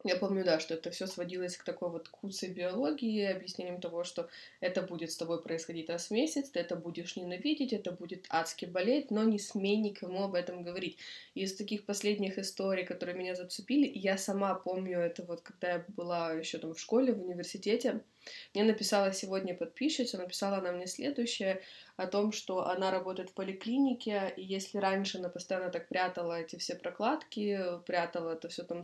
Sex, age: female, 20-39